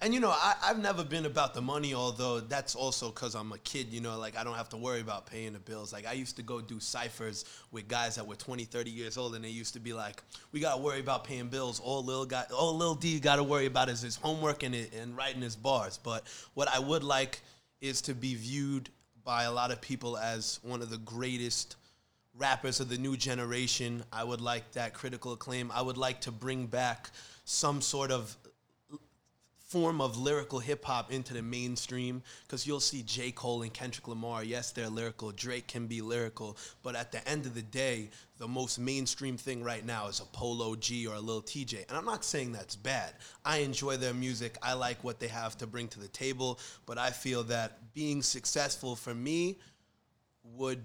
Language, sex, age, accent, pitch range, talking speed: English, male, 20-39, American, 115-135 Hz, 215 wpm